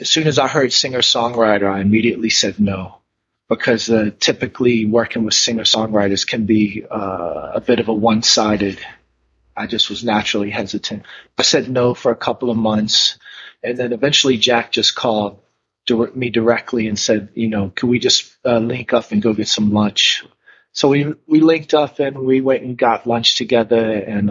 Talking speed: 180 wpm